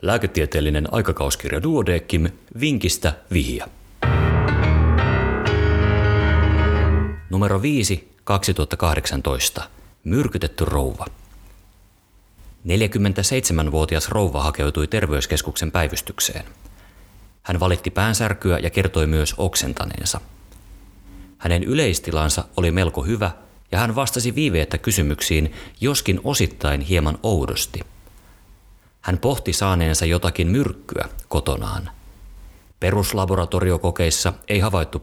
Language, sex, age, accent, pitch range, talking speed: Finnish, male, 30-49, native, 85-100 Hz, 75 wpm